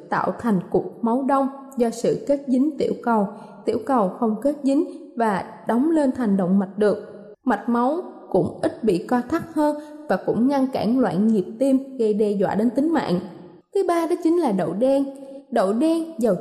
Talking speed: 200 wpm